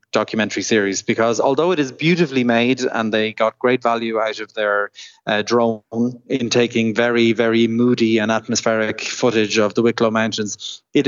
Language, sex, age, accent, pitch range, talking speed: English, male, 20-39, Irish, 110-135 Hz, 170 wpm